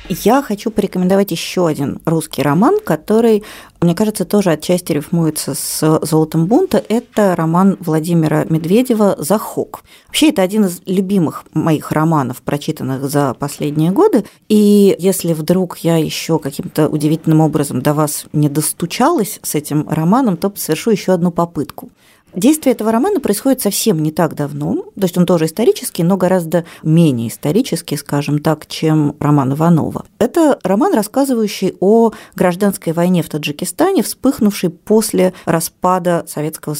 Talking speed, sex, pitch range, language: 140 wpm, female, 155-205 Hz, Russian